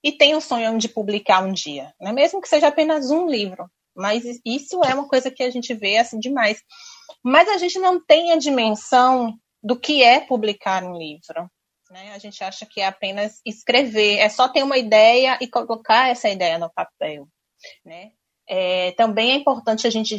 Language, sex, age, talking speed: Portuguese, female, 20-39, 190 wpm